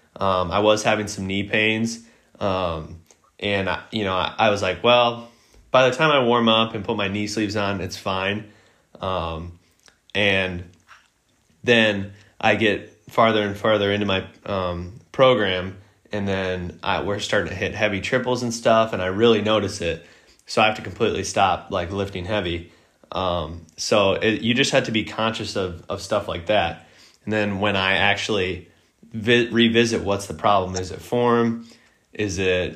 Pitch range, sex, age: 90-110 Hz, male, 20-39